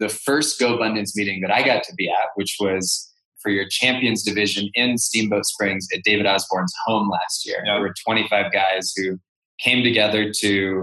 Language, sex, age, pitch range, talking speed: English, male, 20-39, 100-120 Hz, 195 wpm